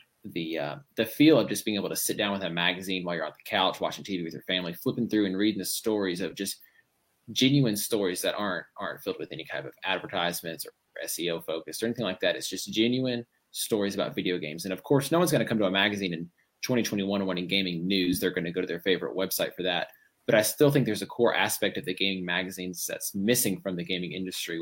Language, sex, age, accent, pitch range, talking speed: English, male, 20-39, American, 95-115 Hz, 245 wpm